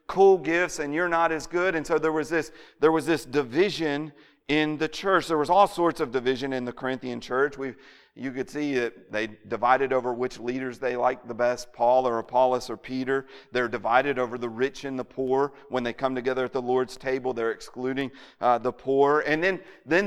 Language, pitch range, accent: English, 125-150 Hz, American